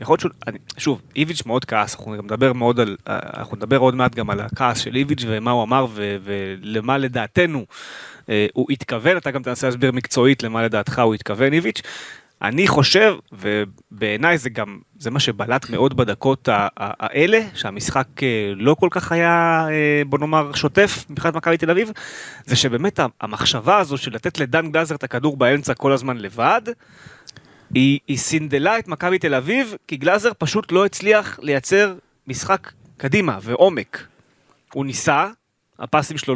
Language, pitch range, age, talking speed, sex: Hebrew, 120-160 Hz, 30-49, 145 wpm, male